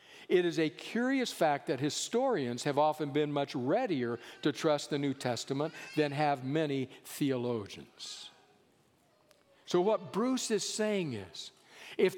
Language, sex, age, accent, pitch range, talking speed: English, male, 60-79, American, 145-205 Hz, 140 wpm